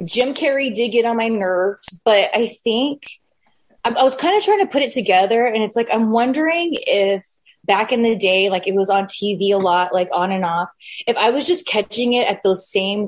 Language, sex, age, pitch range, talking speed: English, female, 20-39, 205-290 Hz, 225 wpm